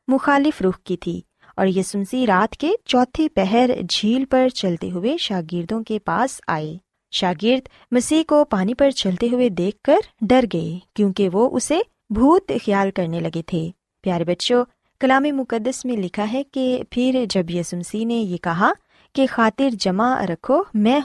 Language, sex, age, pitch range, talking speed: Urdu, female, 20-39, 190-270 Hz, 160 wpm